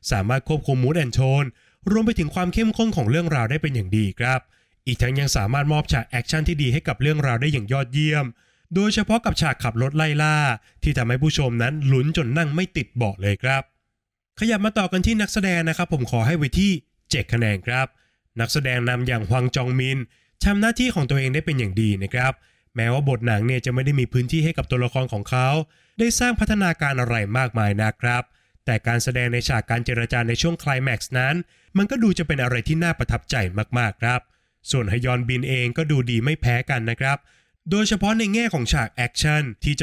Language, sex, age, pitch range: Thai, male, 20-39, 120-165 Hz